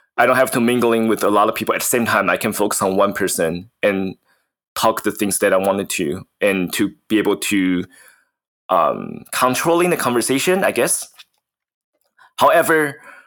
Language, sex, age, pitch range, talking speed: English, male, 20-39, 100-135 Hz, 185 wpm